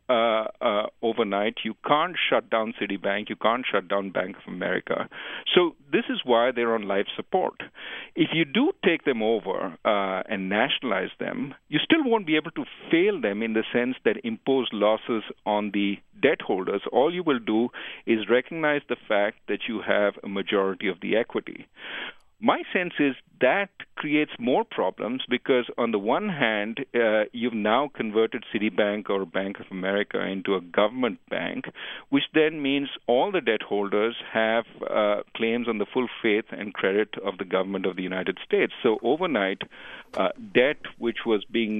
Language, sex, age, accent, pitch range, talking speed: English, male, 50-69, Indian, 100-130 Hz, 175 wpm